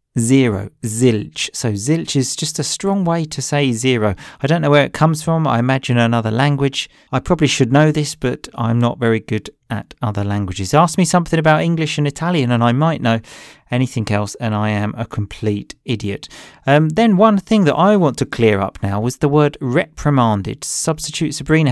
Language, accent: English, British